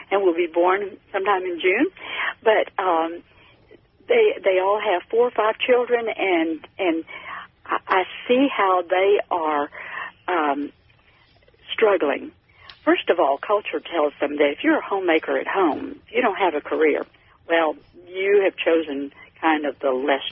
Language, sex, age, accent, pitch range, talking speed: English, female, 60-79, American, 160-255 Hz, 155 wpm